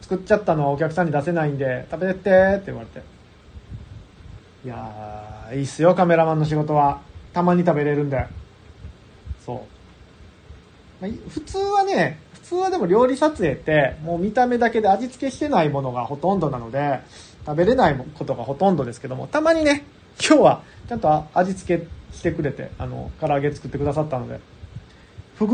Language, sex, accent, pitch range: Japanese, male, native, 140-225 Hz